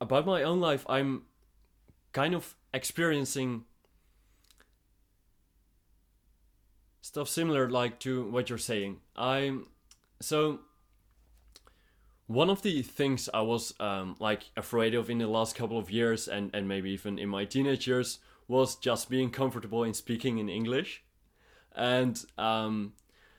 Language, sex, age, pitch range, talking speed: English, male, 20-39, 110-135 Hz, 130 wpm